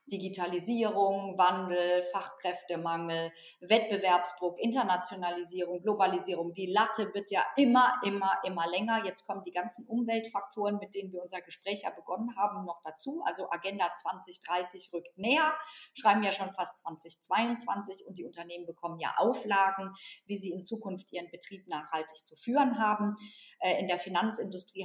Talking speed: 140 wpm